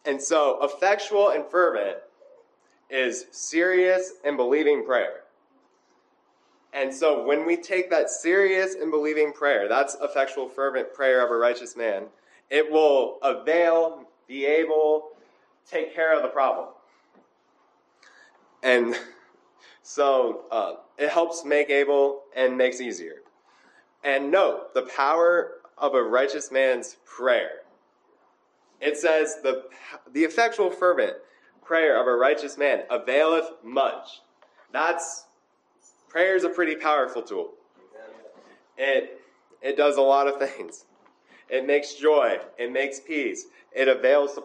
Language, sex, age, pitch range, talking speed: English, male, 20-39, 140-195 Hz, 125 wpm